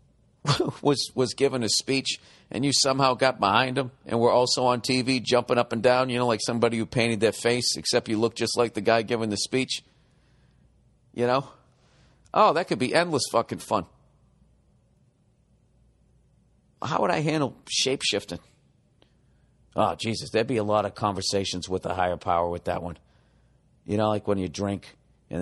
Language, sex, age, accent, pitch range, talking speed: English, male, 50-69, American, 90-125 Hz, 175 wpm